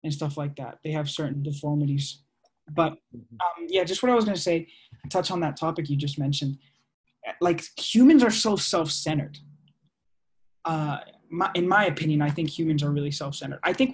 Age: 20-39